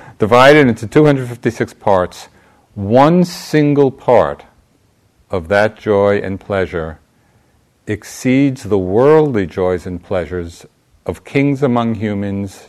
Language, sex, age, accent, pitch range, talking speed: English, male, 50-69, American, 85-115 Hz, 125 wpm